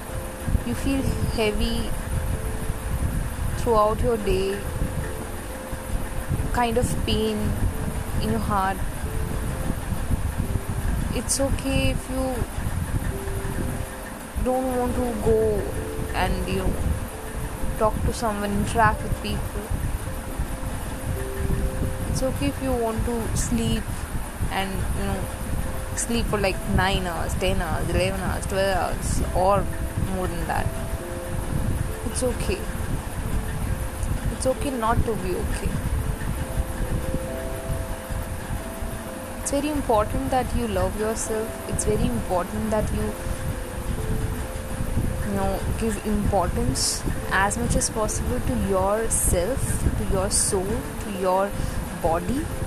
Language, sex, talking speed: Hindi, female, 105 wpm